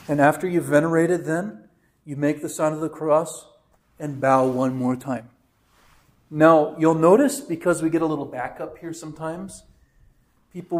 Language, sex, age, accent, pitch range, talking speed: English, male, 40-59, American, 145-180 Hz, 160 wpm